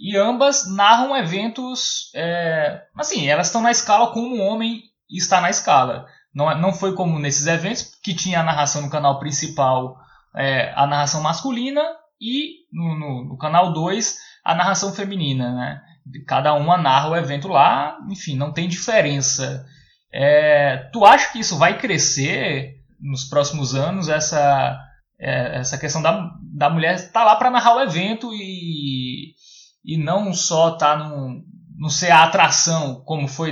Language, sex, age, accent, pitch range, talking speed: Portuguese, male, 20-39, Brazilian, 140-200 Hz, 150 wpm